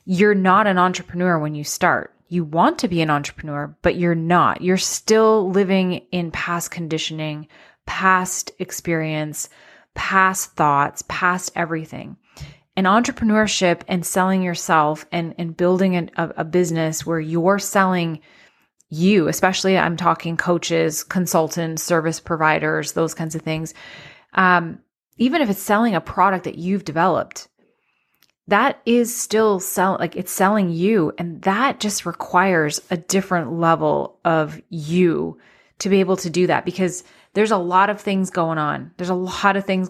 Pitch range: 160-190 Hz